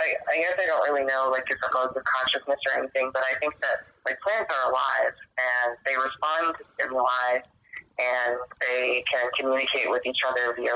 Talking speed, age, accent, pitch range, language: 190 wpm, 30-49, American, 120-130 Hz, English